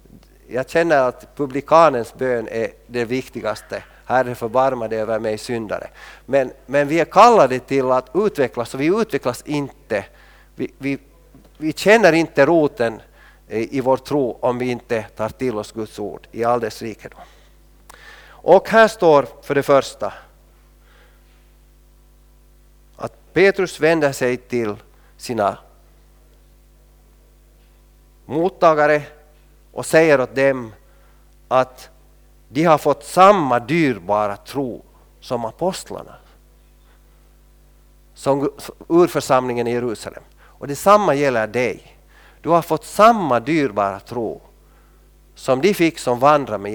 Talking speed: 120 wpm